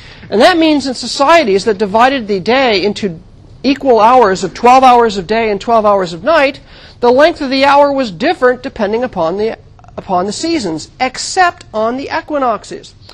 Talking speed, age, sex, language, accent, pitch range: 180 wpm, 50-69, male, English, American, 200-260 Hz